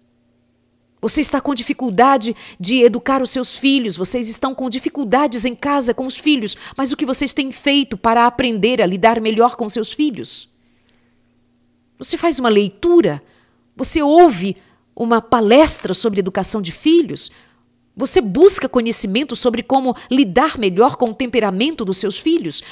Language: Portuguese